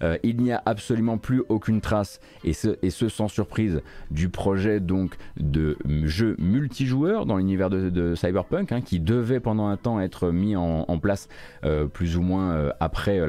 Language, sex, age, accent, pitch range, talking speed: French, male, 30-49, French, 80-105 Hz, 195 wpm